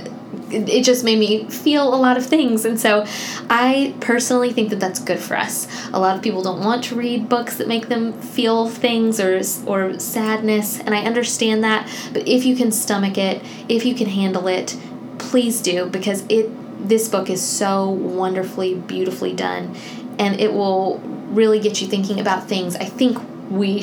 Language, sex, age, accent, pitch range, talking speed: English, female, 10-29, American, 200-240 Hz, 185 wpm